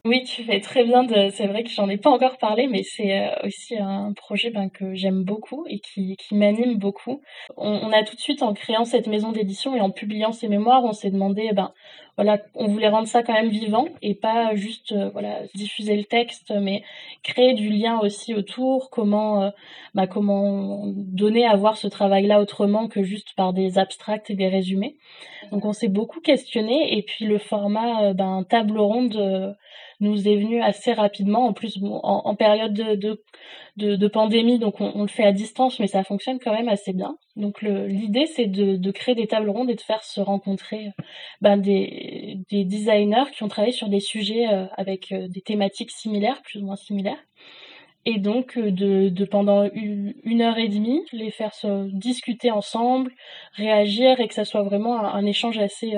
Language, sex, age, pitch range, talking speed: French, female, 20-39, 200-230 Hz, 205 wpm